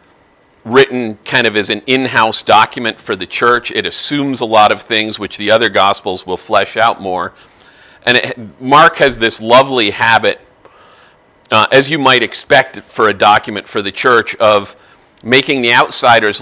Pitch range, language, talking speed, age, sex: 105-130 Hz, English, 165 wpm, 40-59, male